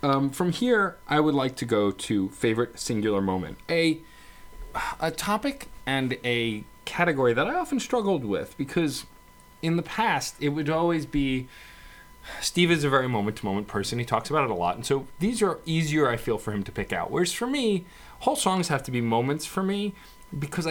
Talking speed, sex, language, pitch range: 200 wpm, male, English, 115-160 Hz